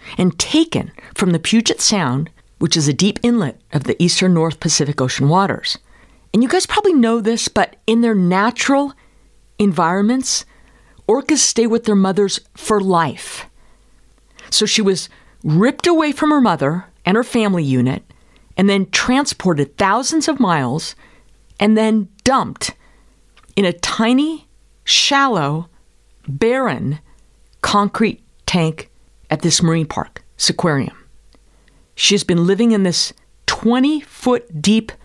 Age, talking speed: 50-69, 135 wpm